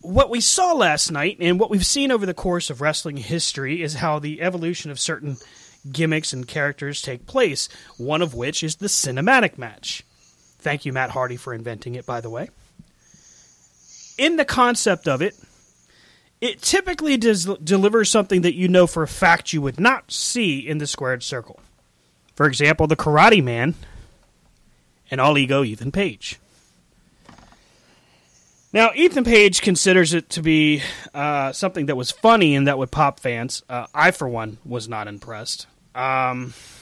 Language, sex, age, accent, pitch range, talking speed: English, male, 30-49, American, 125-185 Hz, 165 wpm